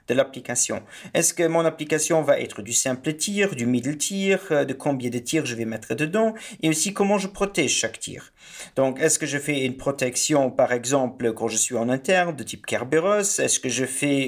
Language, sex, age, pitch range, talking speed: English, male, 40-59, 125-175 Hz, 210 wpm